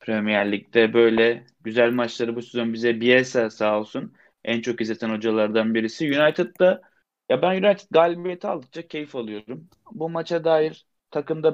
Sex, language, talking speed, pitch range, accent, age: male, Turkish, 145 wpm, 115-150 Hz, native, 30-49